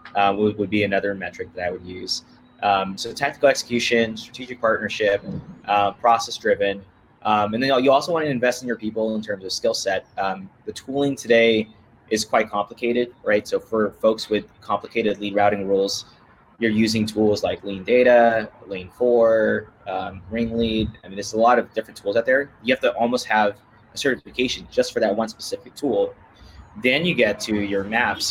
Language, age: English, 20-39